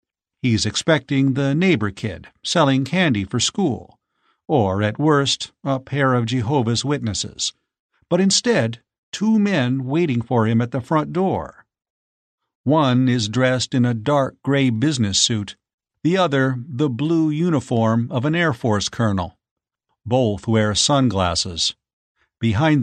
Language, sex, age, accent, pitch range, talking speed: English, male, 50-69, American, 115-155 Hz, 135 wpm